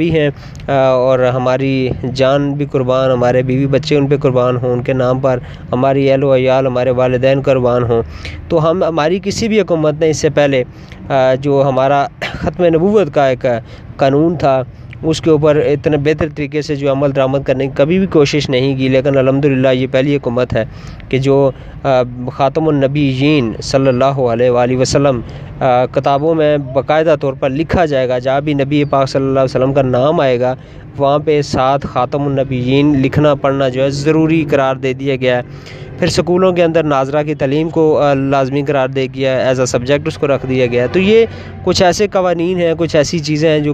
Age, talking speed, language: 20-39, 190 wpm, Urdu